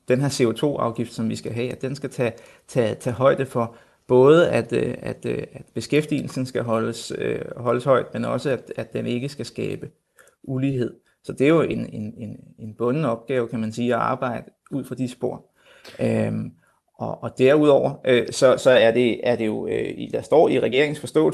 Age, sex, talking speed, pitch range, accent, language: 30-49, male, 190 wpm, 120-135 Hz, native, Danish